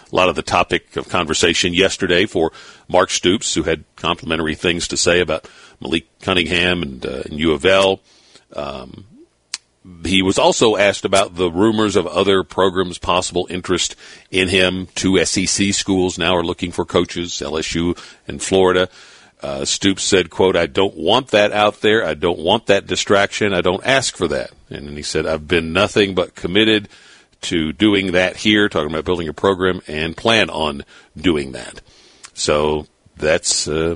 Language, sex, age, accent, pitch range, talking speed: English, male, 50-69, American, 85-100 Hz, 170 wpm